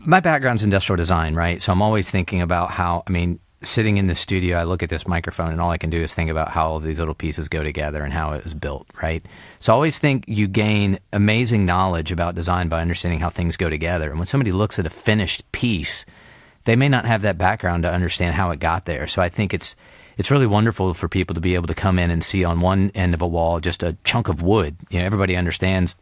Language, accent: English, American